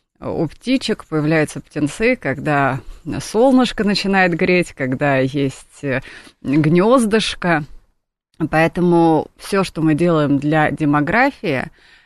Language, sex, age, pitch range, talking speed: Russian, female, 30-49, 145-180 Hz, 90 wpm